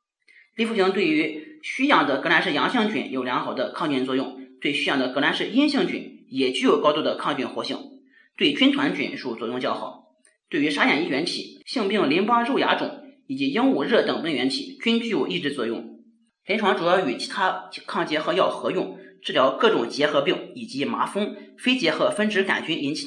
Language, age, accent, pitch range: Chinese, 30-49, native, 185-275 Hz